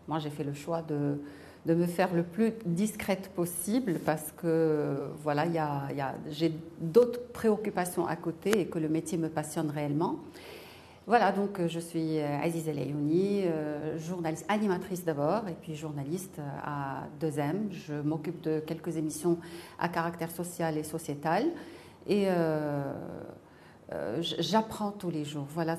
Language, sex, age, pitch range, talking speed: French, female, 40-59, 155-190 Hz, 150 wpm